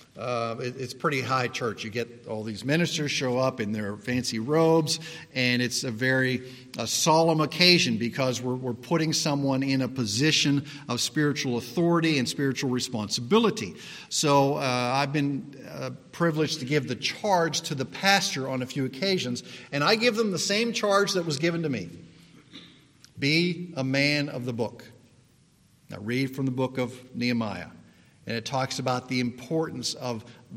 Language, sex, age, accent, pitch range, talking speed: English, male, 50-69, American, 125-165 Hz, 165 wpm